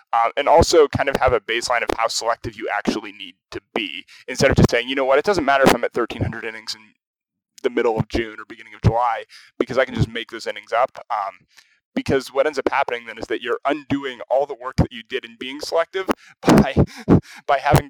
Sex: male